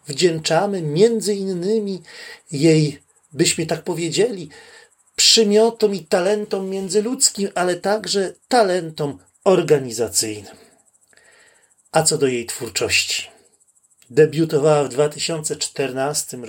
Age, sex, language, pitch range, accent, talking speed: 30-49, male, Polish, 145-205 Hz, native, 85 wpm